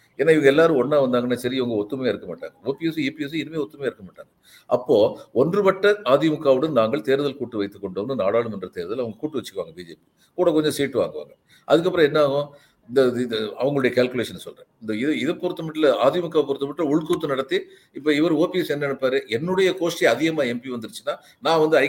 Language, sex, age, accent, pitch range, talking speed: Tamil, male, 50-69, native, 130-175 Hz, 180 wpm